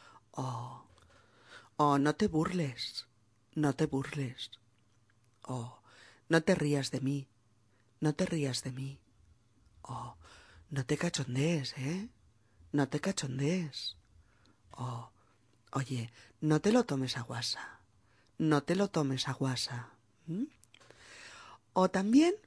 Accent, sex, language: Spanish, female, Spanish